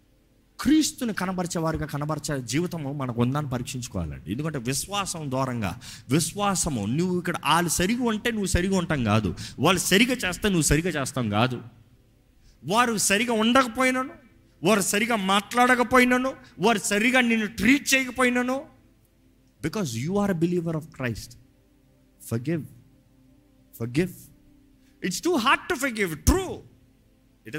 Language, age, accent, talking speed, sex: Telugu, 30-49, native, 115 wpm, male